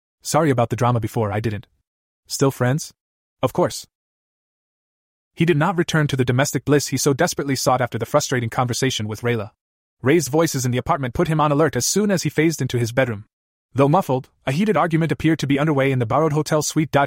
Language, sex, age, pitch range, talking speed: English, male, 20-39, 115-150 Hz, 210 wpm